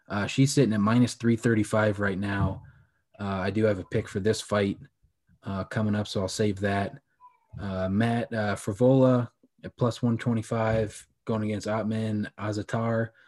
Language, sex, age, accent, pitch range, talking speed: English, male, 20-39, American, 100-115 Hz, 175 wpm